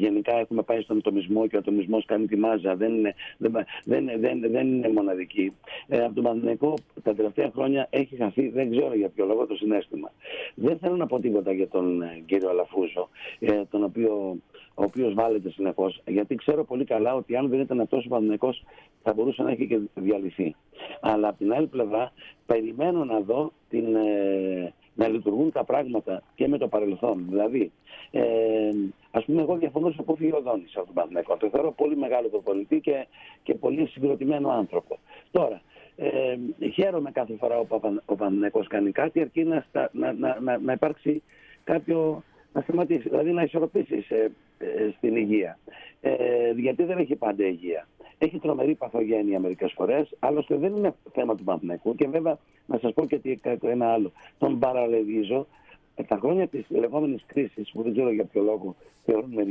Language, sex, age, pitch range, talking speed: Greek, male, 60-79, 105-155 Hz, 190 wpm